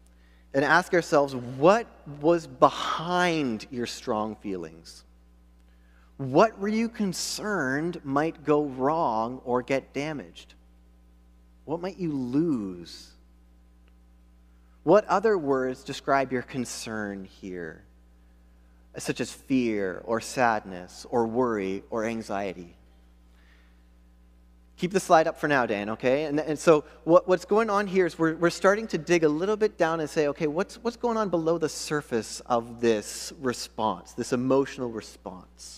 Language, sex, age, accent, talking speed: English, male, 30-49, American, 135 wpm